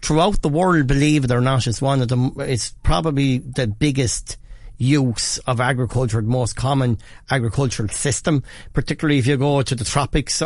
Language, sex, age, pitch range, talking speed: English, male, 40-59, 125-140 Hz, 170 wpm